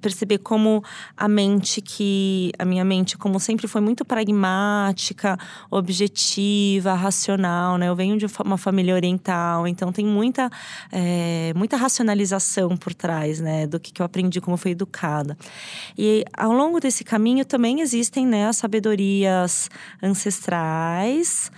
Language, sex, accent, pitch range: Portuguese, female, Brazilian, 185-245 Hz